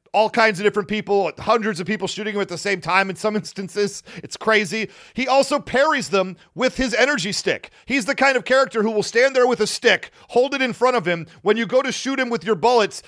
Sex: male